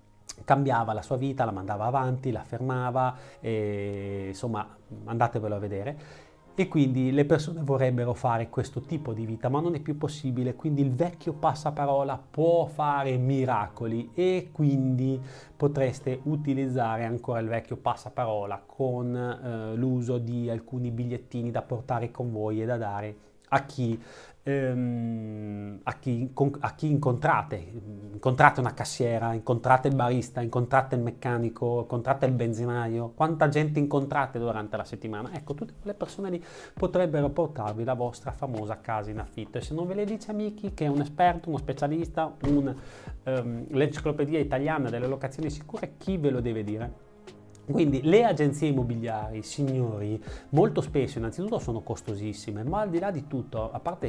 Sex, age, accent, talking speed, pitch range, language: male, 30-49, native, 155 wpm, 115-145 Hz, Italian